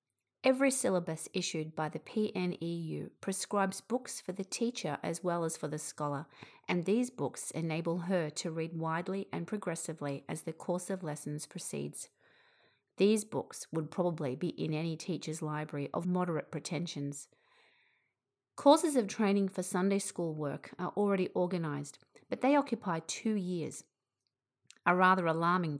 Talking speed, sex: 145 wpm, female